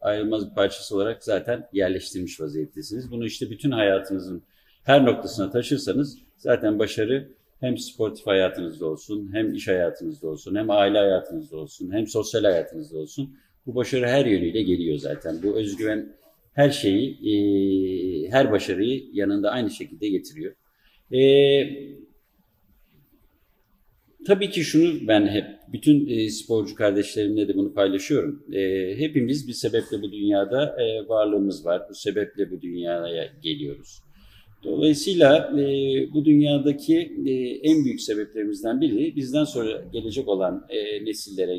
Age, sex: 50-69, male